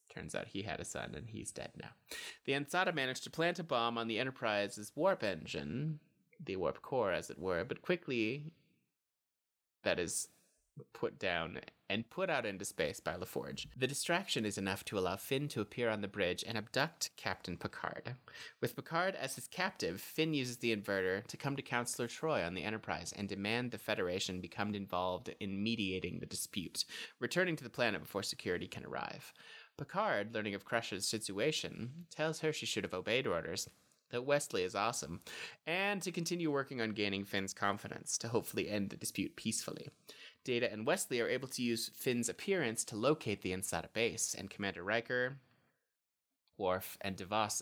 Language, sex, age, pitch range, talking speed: English, male, 30-49, 105-150 Hz, 180 wpm